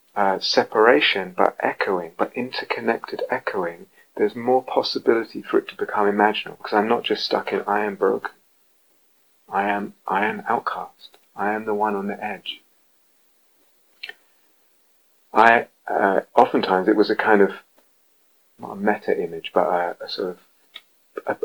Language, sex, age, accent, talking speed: English, male, 30-49, British, 150 wpm